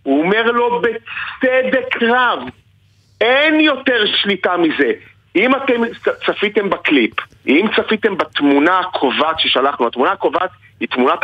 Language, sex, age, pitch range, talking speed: Hebrew, male, 40-59, 170-250 Hz, 115 wpm